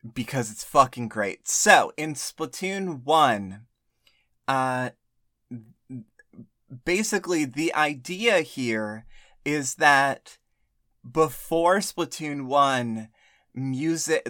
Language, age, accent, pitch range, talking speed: English, 30-49, American, 115-140 Hz, 85 wpm